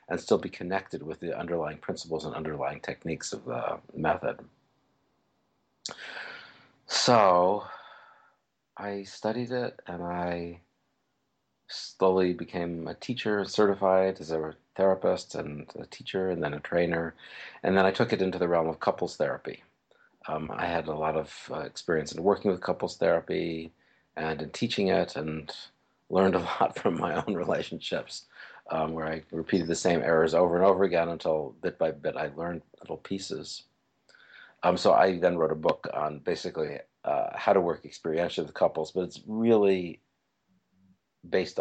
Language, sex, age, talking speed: English, male, 40-59, 160 wpm